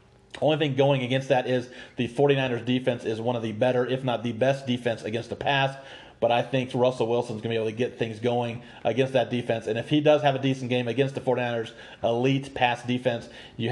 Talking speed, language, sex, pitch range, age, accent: 230 wpm, English, male, 120-135 Hz, 40-59, American